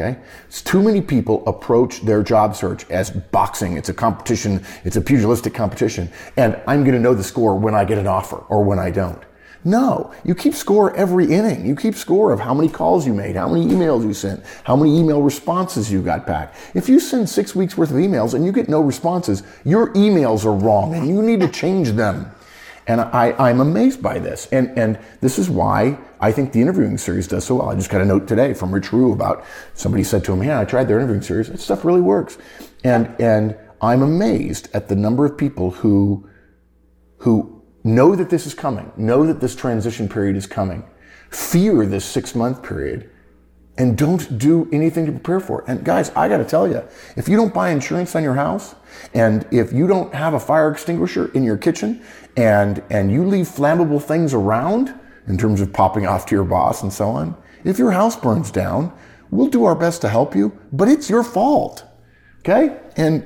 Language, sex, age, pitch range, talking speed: English, male, 30-49, 100-160 Hz, 210 wpm